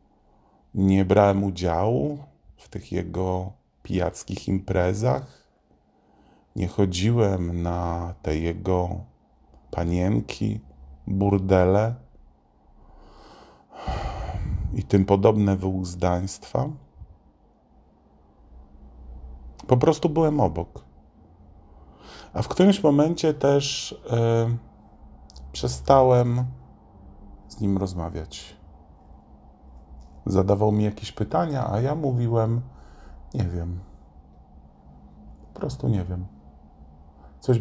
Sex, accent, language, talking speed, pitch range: male, native, Polish, 75 wpm, 70-105 Hz